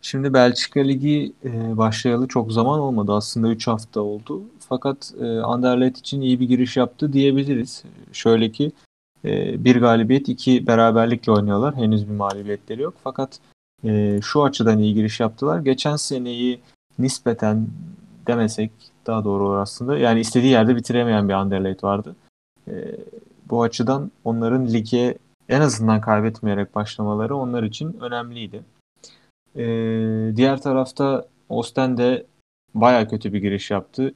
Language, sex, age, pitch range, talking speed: Turkish, male, 30-49, 105-130 Hz, 135 wpm